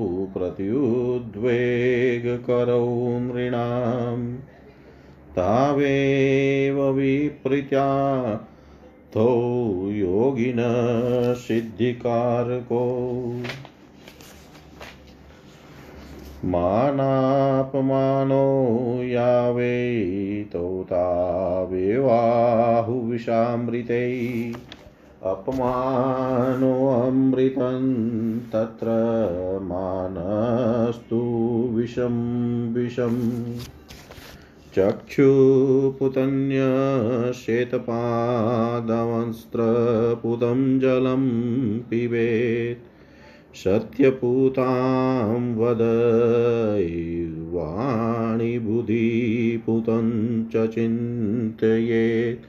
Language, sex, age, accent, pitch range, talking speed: Hindi, male, 40-59, native, 115-125 Hz, 30 wpm